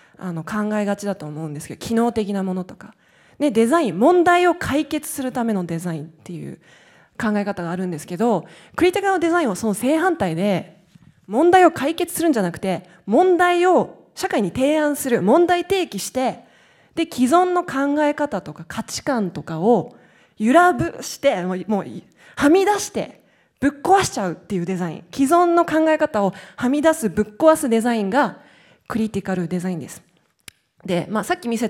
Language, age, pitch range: Japanese, 20-39, 185-290 Hz